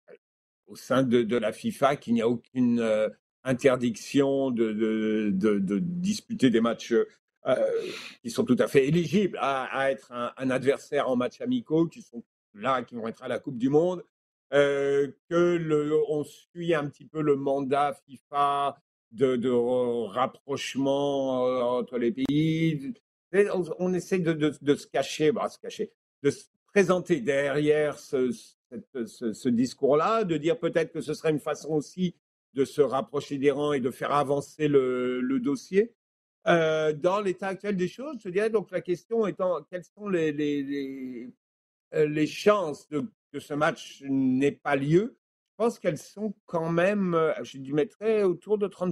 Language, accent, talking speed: French, French, 170 wpm